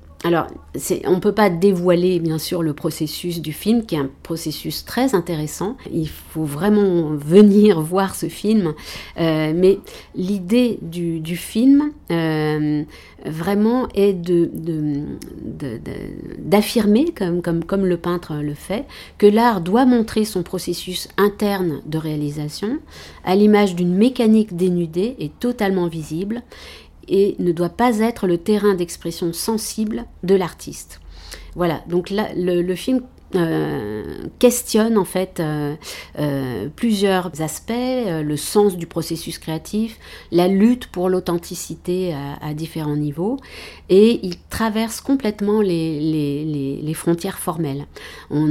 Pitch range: 155-205 Hz